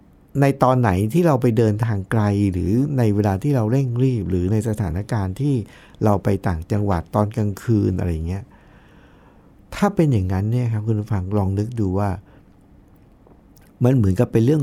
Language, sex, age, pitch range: Thai, male, 60-79, 100-130 Hz